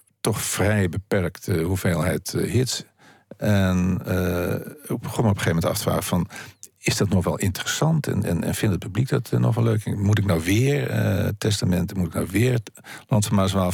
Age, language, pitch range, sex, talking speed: 50-69, Dutch, 90-110 Hz, male, 195 wpm